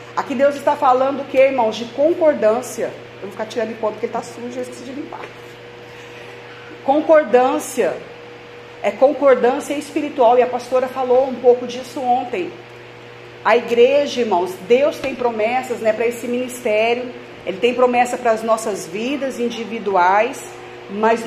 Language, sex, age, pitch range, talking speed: Portuguese, female, 40-59, 235-280 Hz, 150 wpm